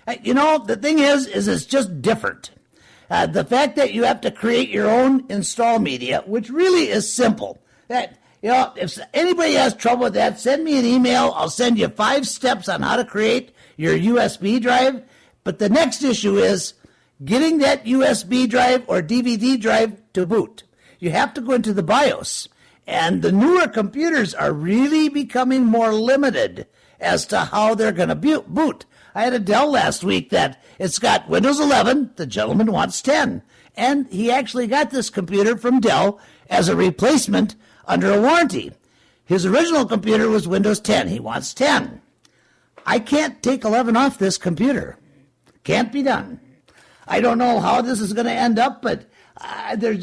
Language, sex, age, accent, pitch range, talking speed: English, male, 60-79, American, 220-275 Hz, 180 wpm